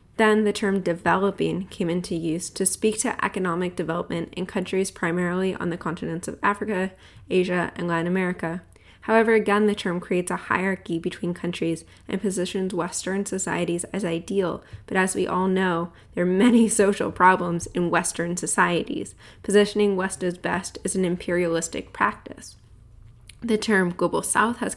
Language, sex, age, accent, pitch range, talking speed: English, female, 10-29, American, 170-195 Hz, 155 wpm